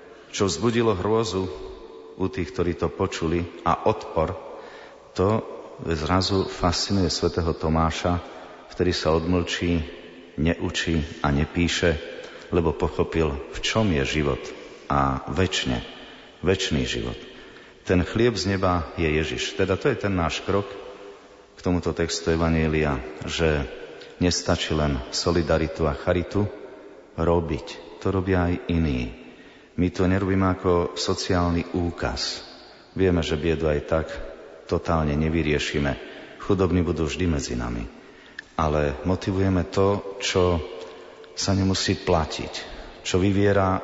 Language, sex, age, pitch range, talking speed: Slovak, male, 40-59, 80-95 Hz, 115 wpm